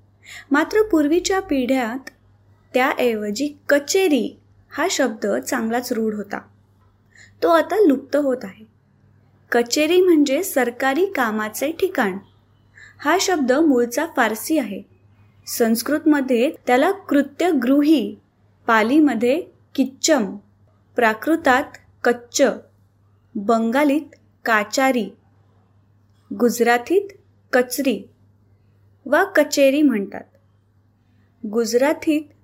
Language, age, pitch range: Marathi, 20-39, 210-295 Hz